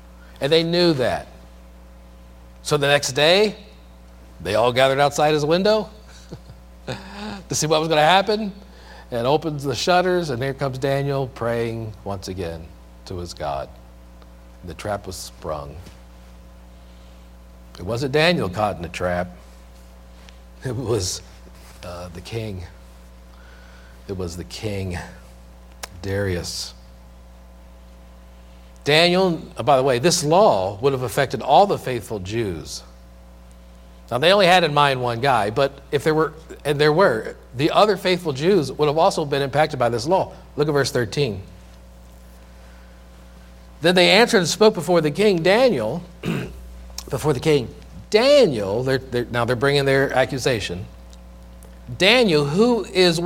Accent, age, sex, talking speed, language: American, 50-69, male, 135 wpm, English